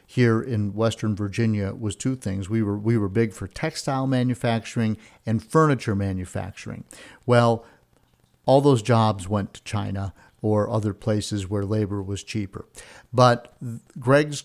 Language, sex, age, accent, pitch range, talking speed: English, male, 50-69, American, 105-125 Hz, 140 wpm